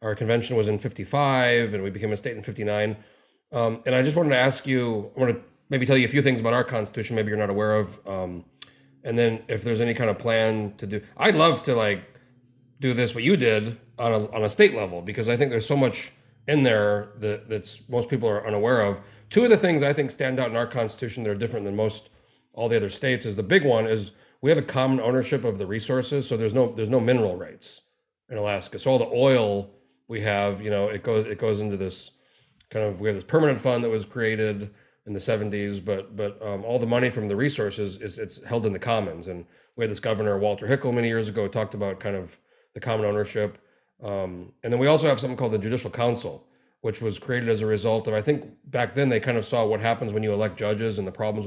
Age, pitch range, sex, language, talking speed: 30-49, 105-125 Hz, male, English, 250 wpm